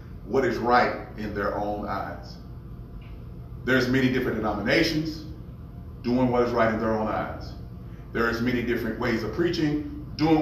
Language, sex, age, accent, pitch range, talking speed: English, male, 40-59, American, 110-150 Hz, 150 wpm